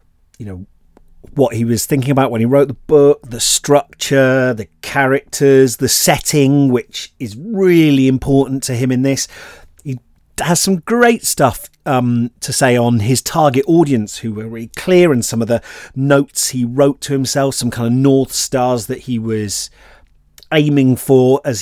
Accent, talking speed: British, 165 wpm